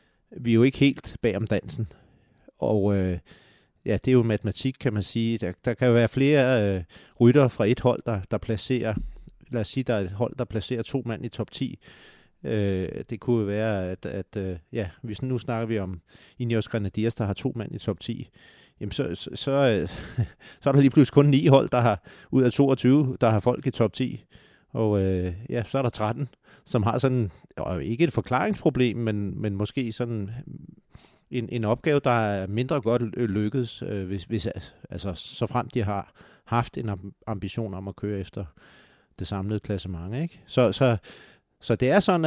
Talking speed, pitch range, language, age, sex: 200 wpm, 105-130 Hz, Danish, 30-49, male